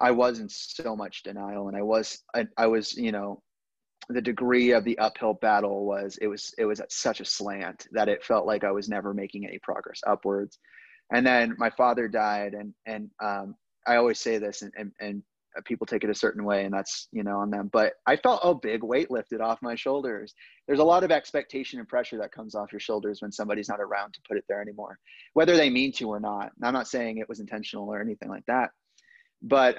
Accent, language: American, English